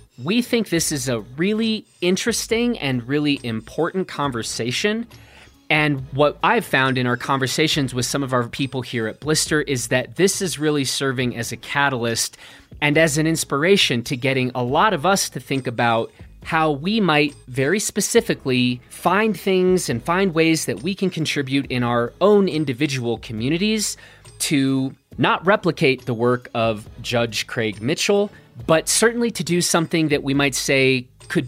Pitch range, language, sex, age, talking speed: 125-170 Hz, English, male, 30-49, 165 wpm